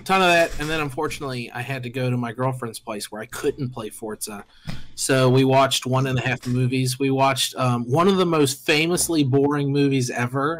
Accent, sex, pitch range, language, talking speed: American, male, 125-160 Hz, English, 215 wpm